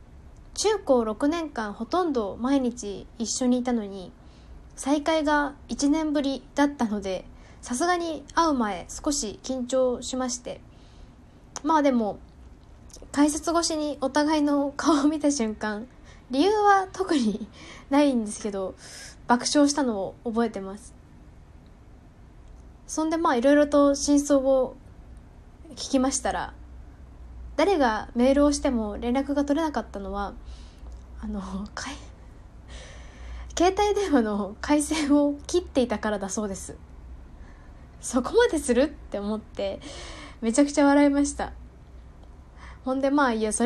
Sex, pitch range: female, 210-290 Hz